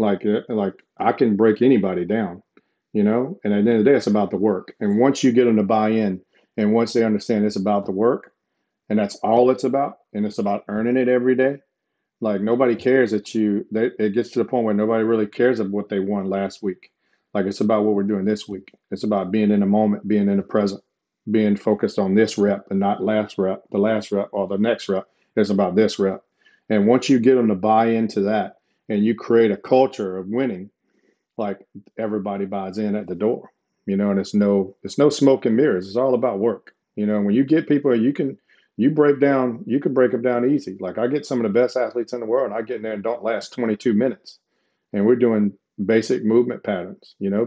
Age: 40-59